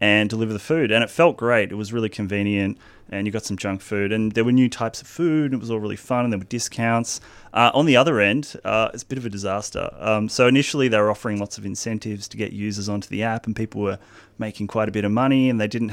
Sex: male